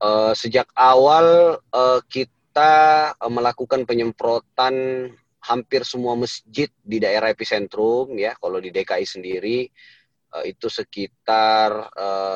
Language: Indonesian